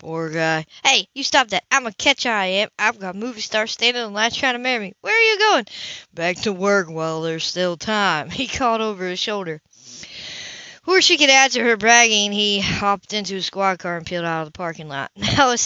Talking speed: 230 wpm